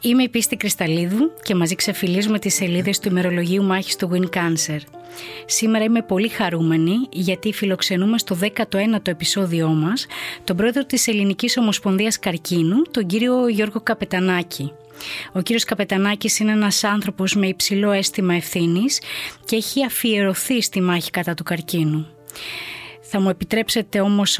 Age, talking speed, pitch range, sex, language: 20-39, 140 wpm, 175-220 Hz, female, English